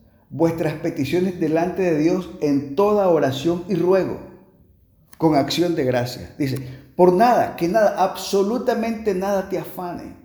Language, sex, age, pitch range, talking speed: Spanish, male, 50-69, 115-195 Hz, 135 wpm